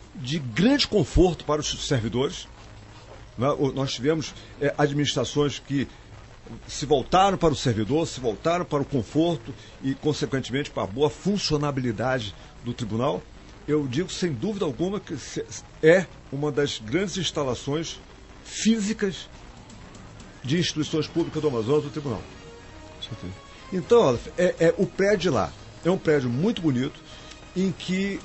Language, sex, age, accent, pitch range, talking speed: Portuguese, male, 50-69, Brazilian, 120-165 Hz, 125 wpm